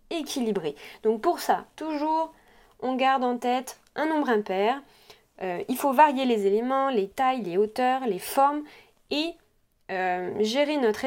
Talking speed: 150 wpm